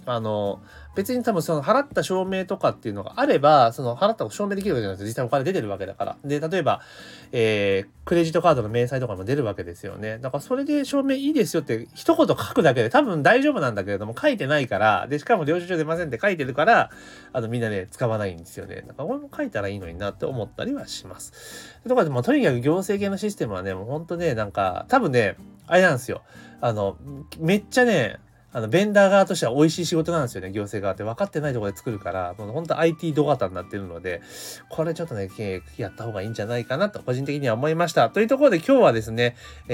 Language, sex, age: Japanese, male, 30-49